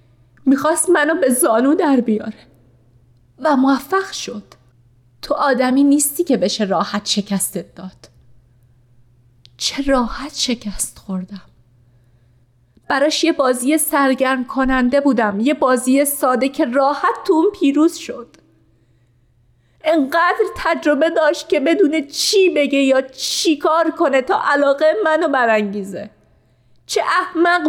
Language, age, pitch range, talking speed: Persian, 30-49, 190-300 Hz, 115 wpm